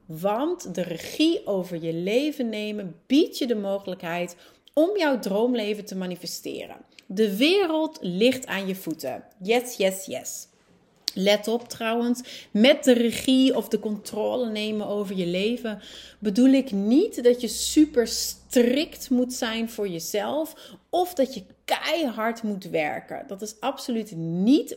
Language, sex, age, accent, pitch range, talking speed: Dutch, female, 30-49, Dutch, 195-260 Hz, 145 wpm